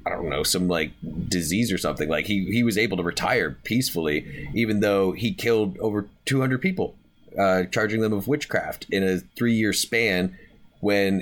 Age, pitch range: 30-49, 90-110 Hz